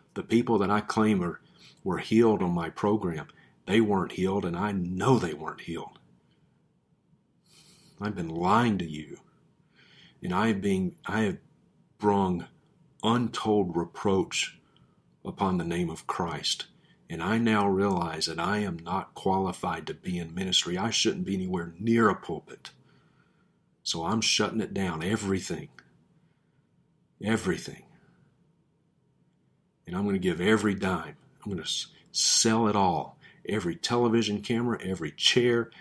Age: 50-69